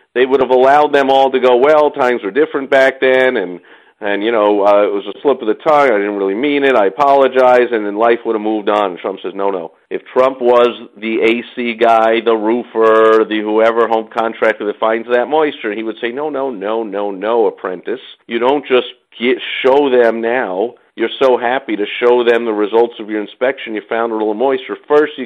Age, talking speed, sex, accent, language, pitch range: 50-69, 220 wpm, male, American, English, 115-155 Hz